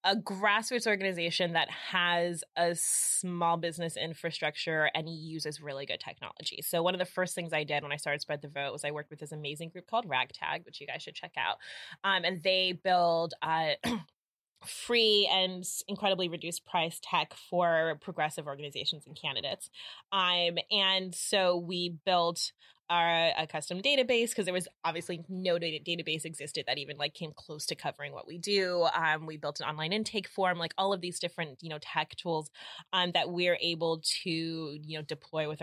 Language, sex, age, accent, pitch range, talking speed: English, female, 20-39, American, 150-180 Hz, 185 wpm